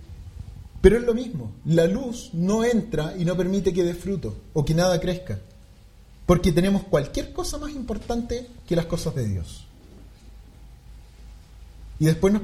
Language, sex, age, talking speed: English, male, 30-49, 155 wpm